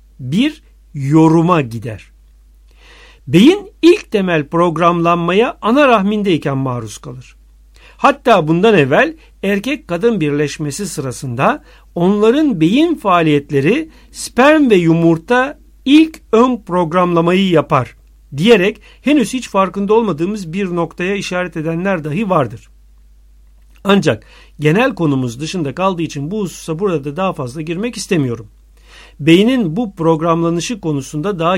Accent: native